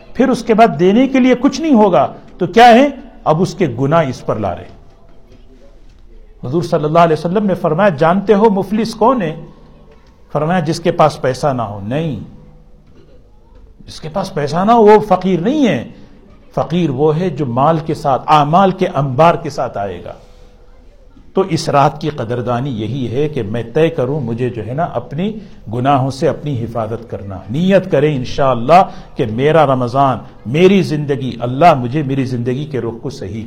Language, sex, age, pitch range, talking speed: Urdu, male, 50-69, 130-185 Hz, 185 wpm